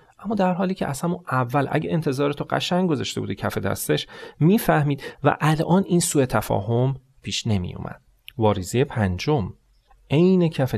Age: 30-49